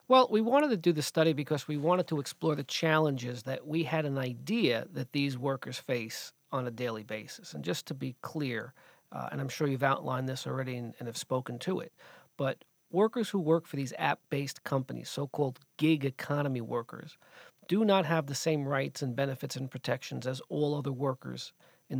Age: 40-59